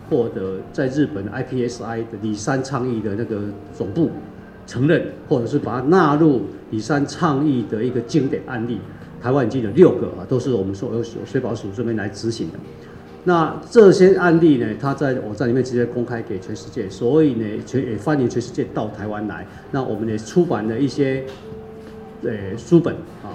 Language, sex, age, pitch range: Chinese, male, 50-69, 105-140 Hz